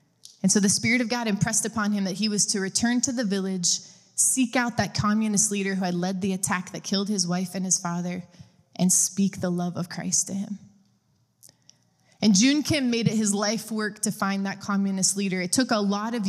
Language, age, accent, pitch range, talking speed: English, 20-39, American, 195-230 Hz, 220 wpm